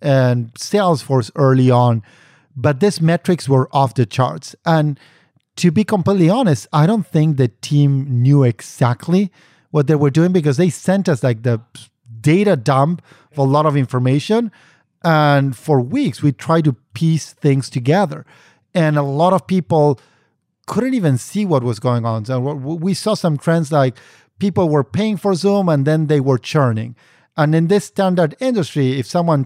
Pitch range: 135-175 Hz